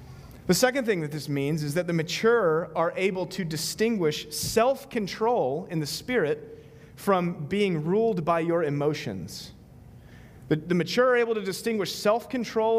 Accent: American